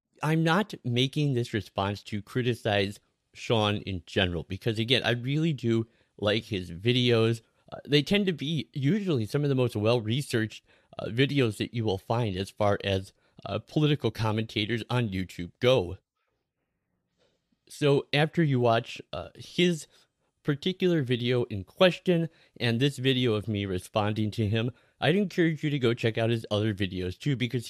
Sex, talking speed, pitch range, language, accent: male, 160 wpm, 105-145 Hz, English, American